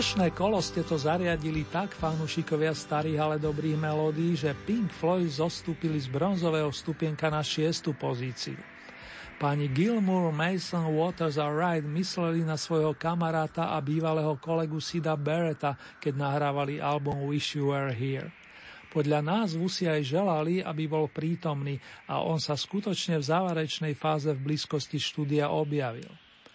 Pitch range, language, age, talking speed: 145-170 Hz, Slovak, 40-59, 140 wpm